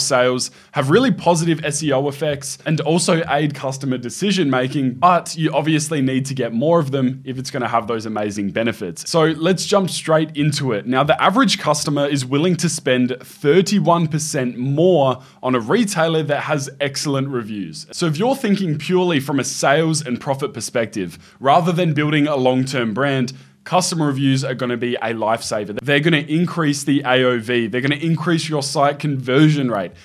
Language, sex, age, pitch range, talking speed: English, male, 20-39, 130-165 Hz, 175 wpm